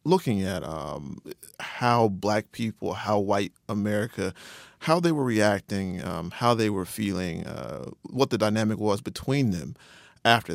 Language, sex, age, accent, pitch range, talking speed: English, male, 30-49, American, 100-120 Hz, 150 wpm